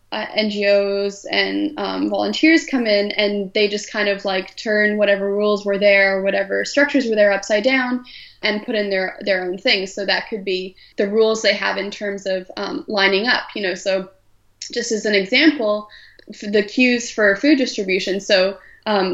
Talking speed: 185 wpm